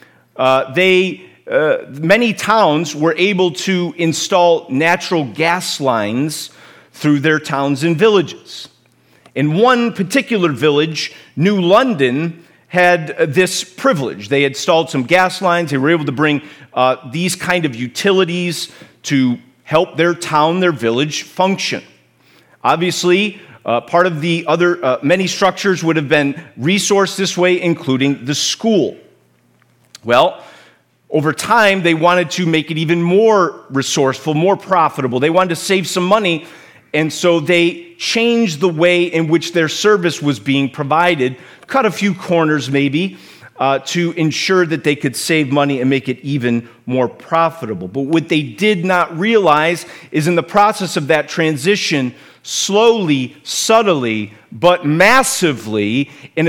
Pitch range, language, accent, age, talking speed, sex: 145-185 Hz, English, American, 40-59, 145 wpm, male